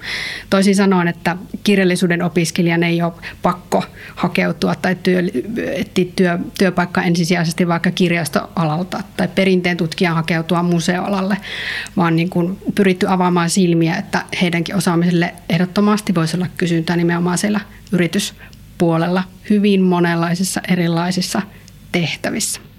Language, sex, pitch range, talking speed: Finnish, female, 170-195 Hz, 115 wpm